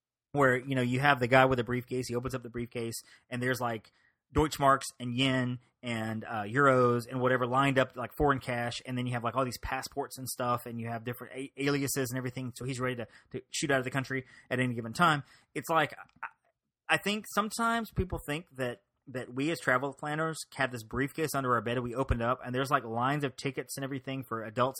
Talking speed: 230 wpm